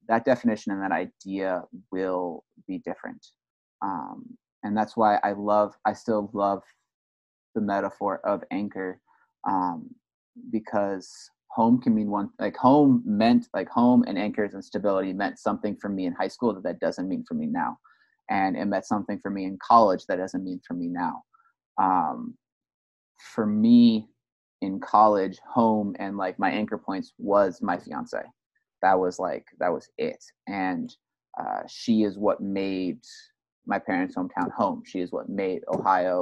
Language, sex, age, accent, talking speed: English, male, 20-39, American, 165 wpm